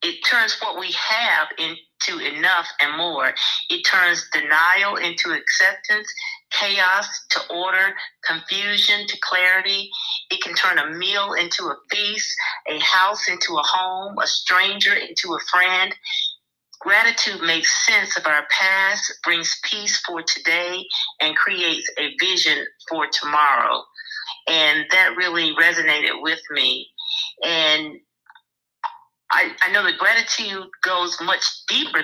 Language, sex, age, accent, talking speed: English, female, 40-59, American, 130 wpm